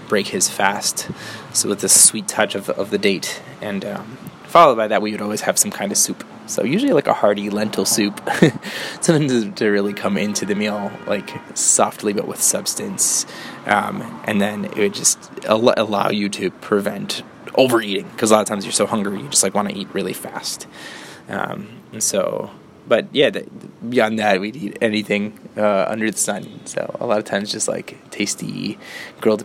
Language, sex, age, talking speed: English, male, 20-39, 195 wpm